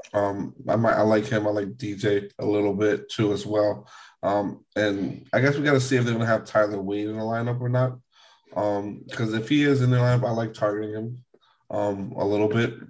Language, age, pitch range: English, 20-39, 105-125 Hz